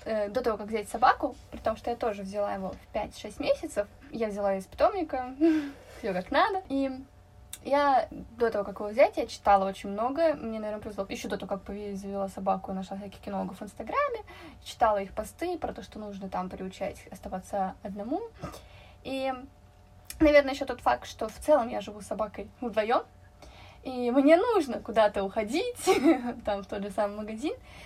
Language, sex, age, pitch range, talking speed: Russian, female, 20-39, 210-290 Hz, 180 wpm